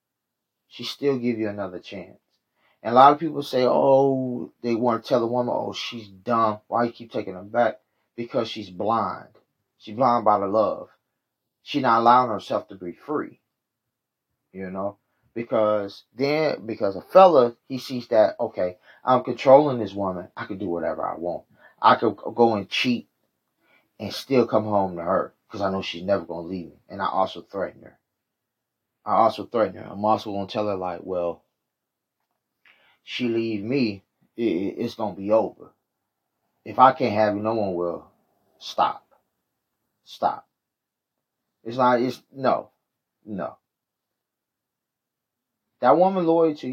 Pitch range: 100-125 Hz